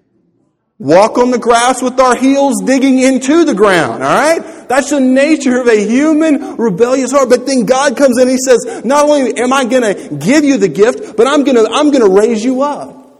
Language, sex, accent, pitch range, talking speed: English, male, American, 180-255 Hz, 210 wpm